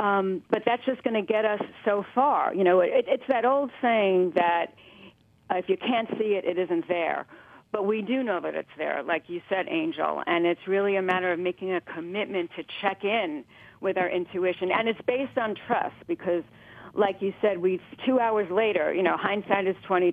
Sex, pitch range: female, 185-230 Hz